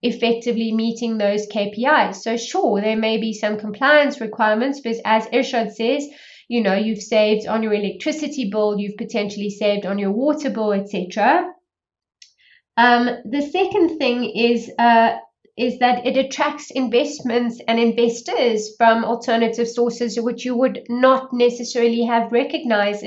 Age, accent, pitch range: 20-39, British, 225-245 Hz